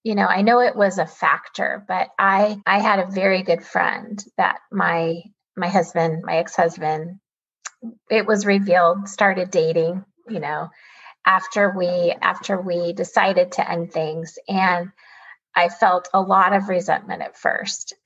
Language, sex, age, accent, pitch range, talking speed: English, female, 30-49, American, 175-215 Hz, 155 wpm